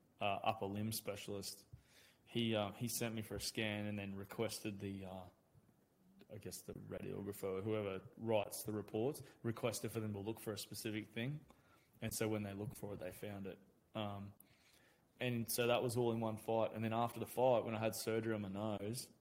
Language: English